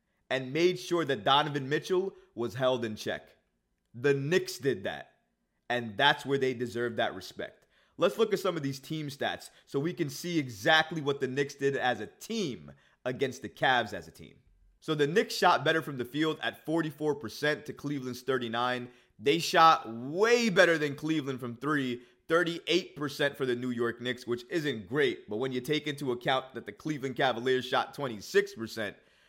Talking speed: 180 wpm